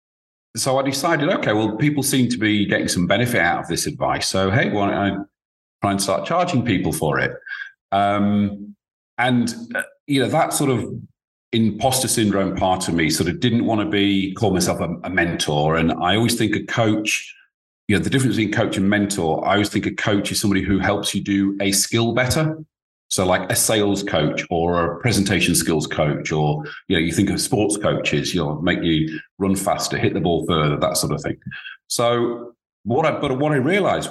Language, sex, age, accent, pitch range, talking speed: English, male, 40-59, British, 90-115 Hz, 210 wpm